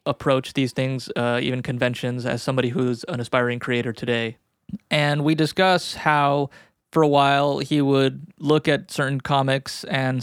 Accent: American